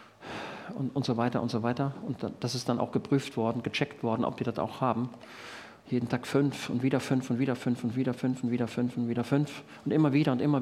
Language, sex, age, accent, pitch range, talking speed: German, male, 50-69, German, 115-140 Hz, 270 wpm